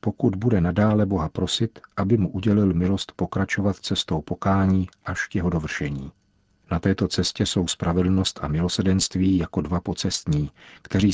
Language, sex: Czech, male